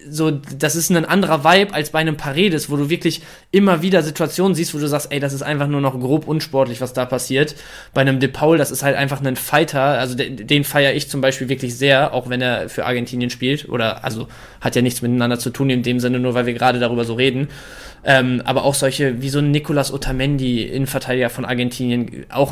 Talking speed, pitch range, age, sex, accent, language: 230 wpm, 135-155 Hz, 20-39, male, German, German